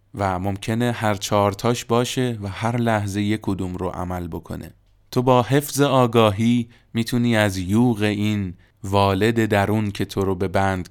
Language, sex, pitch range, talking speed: Persian, male, 95-115 Hz, 155 wpm